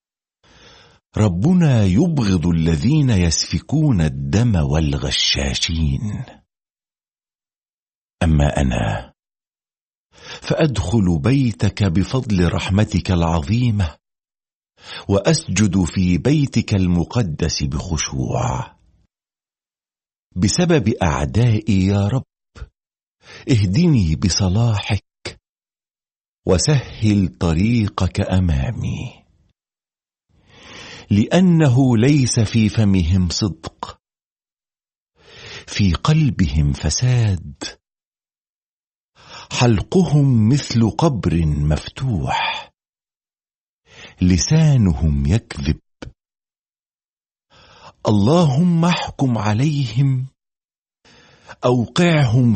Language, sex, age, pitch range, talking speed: Arabic, male, 50-69, 90-130 Hz, 50 wpm